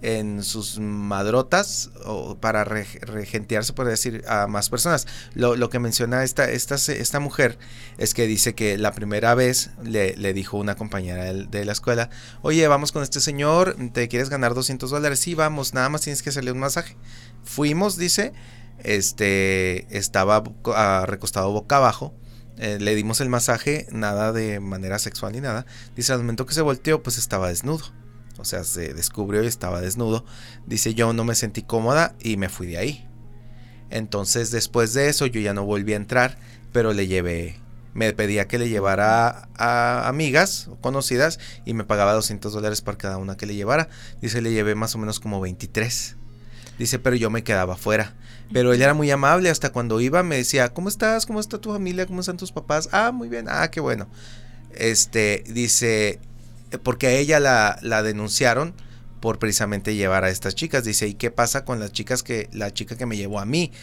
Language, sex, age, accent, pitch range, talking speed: Spanish, male, 30-49, Mexican, 105-125 Hz, 190 wpm